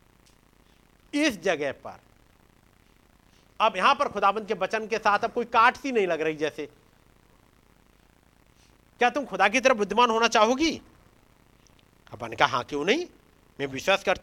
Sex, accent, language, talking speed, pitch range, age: male, native, Hindi, 110 wpm, 155-245 Hz, 50-69